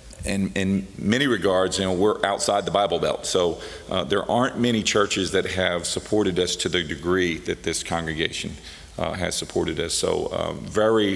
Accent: American